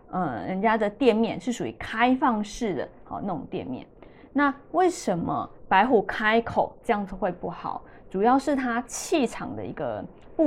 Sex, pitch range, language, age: female, 205-280 Hz, Chinese, 20-39